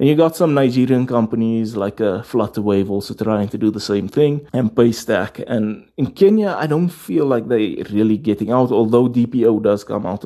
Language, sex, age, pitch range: English, male, 20-39, 105-130 Hz